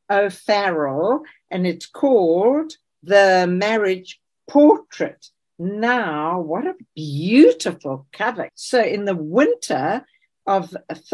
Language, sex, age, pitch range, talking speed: English, female, 60-79, 185-275 Hz, 90 wpm